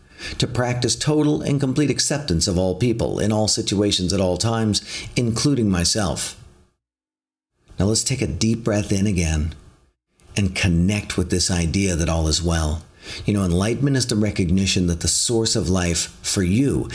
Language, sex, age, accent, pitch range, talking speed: English, male, 50-69, American, 85-120 Hz, 165 wpm